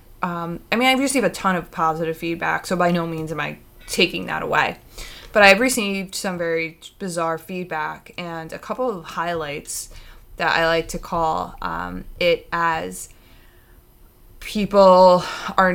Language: English